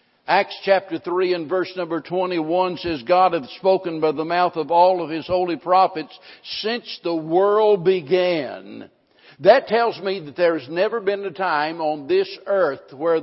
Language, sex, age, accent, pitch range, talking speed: English, male, 60-79, American, 170-205 Hz, 170 wpm